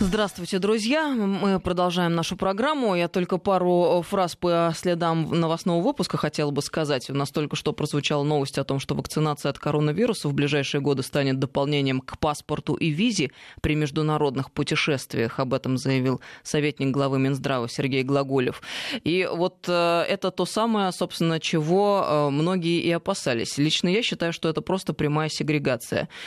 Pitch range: 150-185 Hz